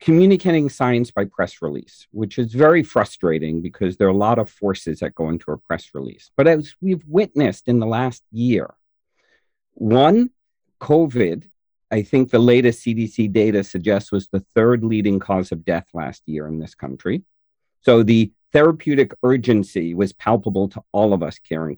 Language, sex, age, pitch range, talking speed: English, male, 50-69, 110-165 Hz, 170 wpm